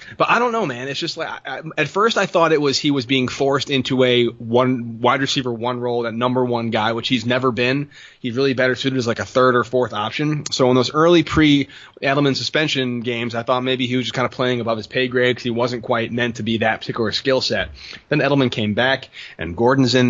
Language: English